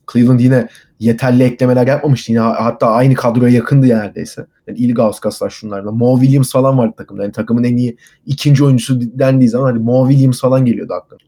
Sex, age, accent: male, 30-49, native